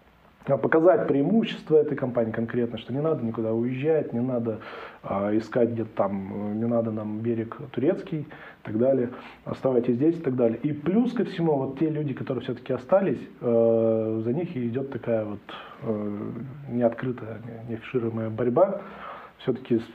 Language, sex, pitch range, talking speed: Russian, male, 115-135 Hz, 155 wpm